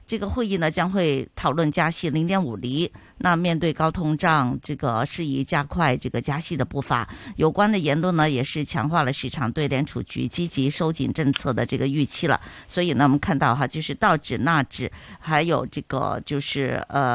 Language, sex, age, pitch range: Chinese, female, 50-69, 140-200 Hz